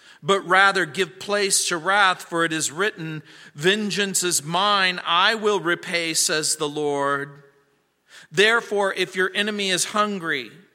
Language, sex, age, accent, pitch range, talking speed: English, male, 50-69, American, 175-220 Hz, 140 wpm